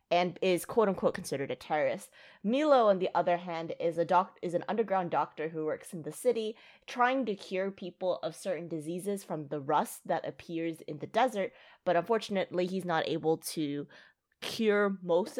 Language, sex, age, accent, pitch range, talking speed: English, female, 20-39, American, 160-205 Hz, 180 wpm